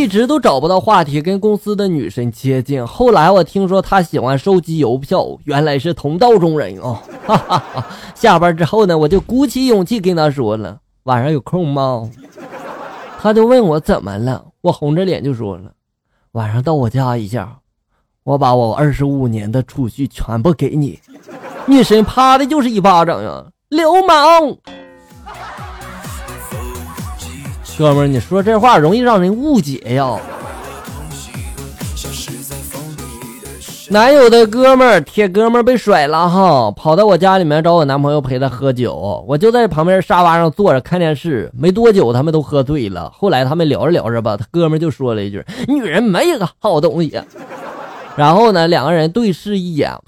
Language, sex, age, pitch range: Chinese, male, 20-39, 135-215 Hz